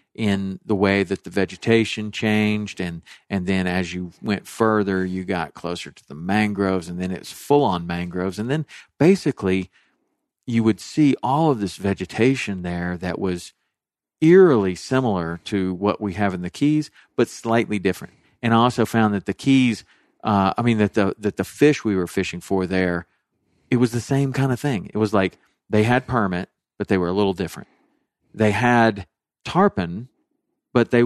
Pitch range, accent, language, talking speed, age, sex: 95-120 Hz, American, English, 185 wpm, 50-69, male